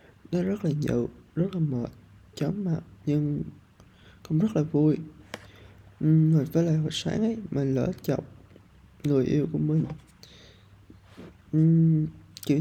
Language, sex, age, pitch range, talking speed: Vietnamese, male, 20-39, 100-155 Hz, 145 wpm